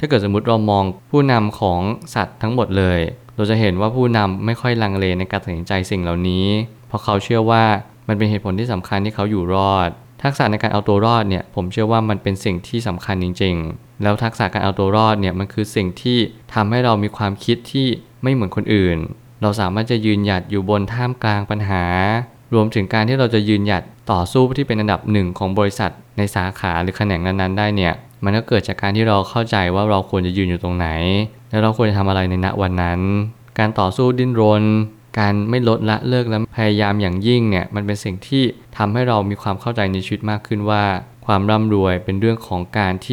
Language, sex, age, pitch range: Thai, male, 20-39, 95-115 Hz